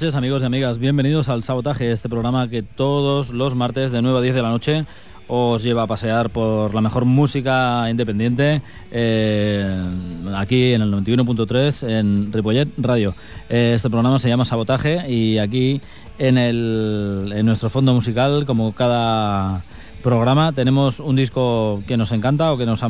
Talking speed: 165 wpm